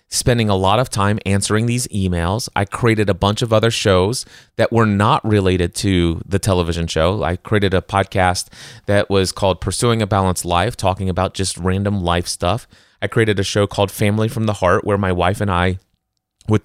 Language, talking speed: English, 200 wpm